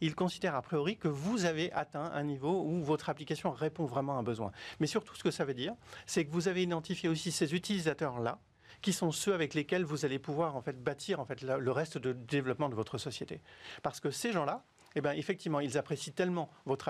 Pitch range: 130-170 Hz